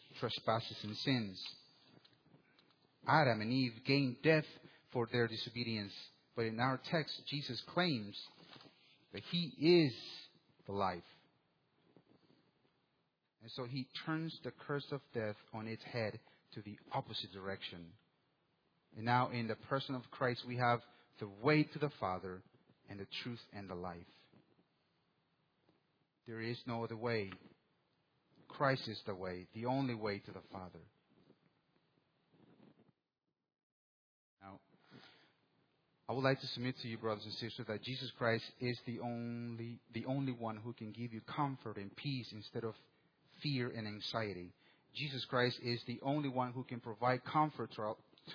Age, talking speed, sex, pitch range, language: 30-49, 145 wpm, male, 110-135 Hz, English